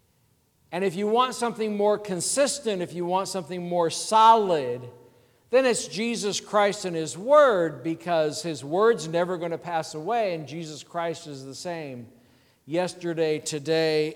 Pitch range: 150-195 Hz